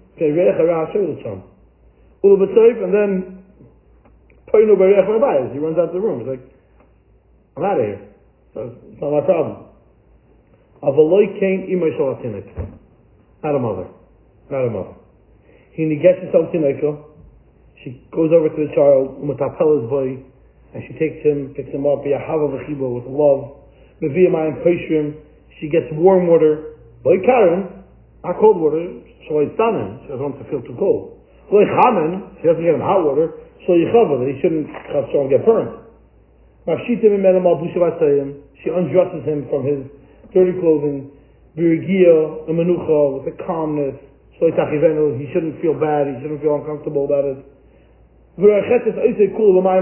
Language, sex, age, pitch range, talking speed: English, male, 40-59, 145-190 Hz, 130 wpm